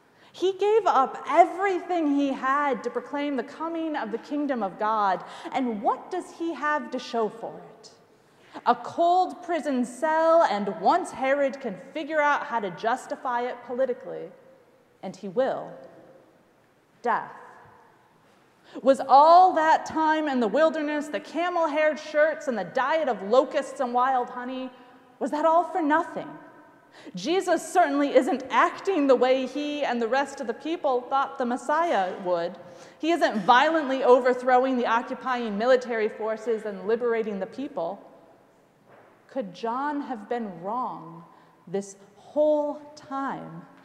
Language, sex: English, female